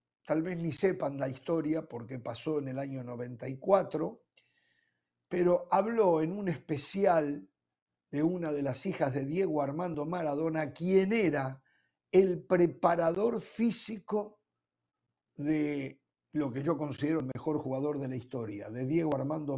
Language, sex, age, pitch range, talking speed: Spanish, male, 50-69, 140-200 Hz, 140 wpm